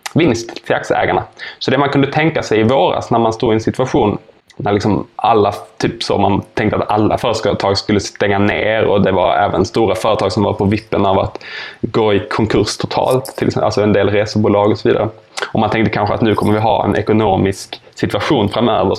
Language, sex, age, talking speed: Swedish, male, 10-29, 210 wpm